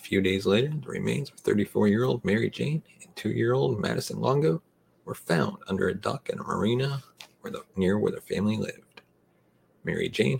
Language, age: English, 40-59